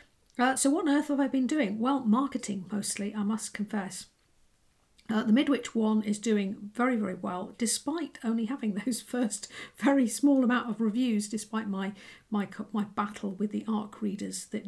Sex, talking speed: female, 180 wpm